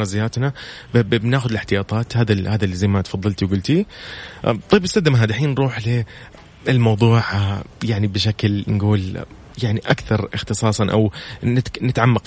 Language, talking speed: Arabic, 110 wpm